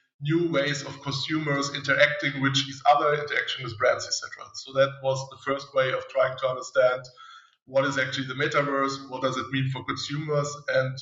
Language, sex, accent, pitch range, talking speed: English, male, German, 130-145 Hz, 185 wpm